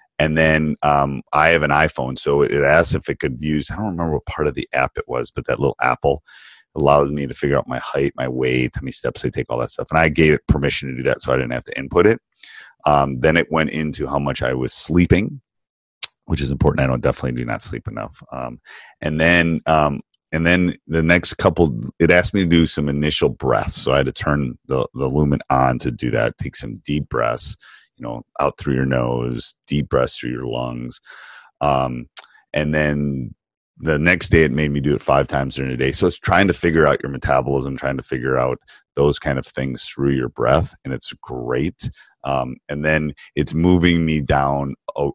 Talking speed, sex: 225 wpm, male